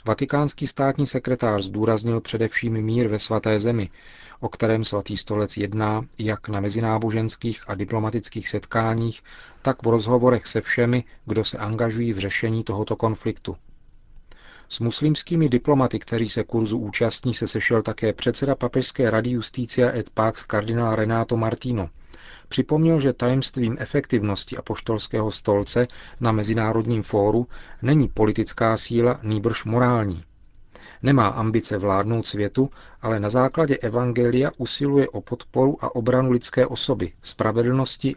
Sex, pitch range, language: male, 105-125 Hz, Czech